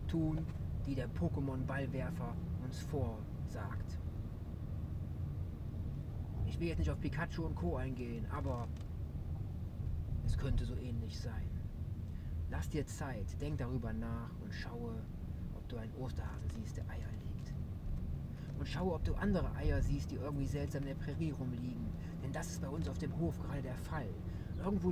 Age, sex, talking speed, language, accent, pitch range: 30-49, male, 150 wpm, German, German, 80-110 Hz